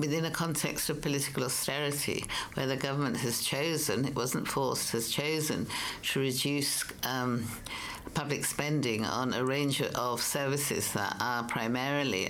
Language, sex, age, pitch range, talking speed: English, female, 60-79, 120-145 Hz, 140 wpm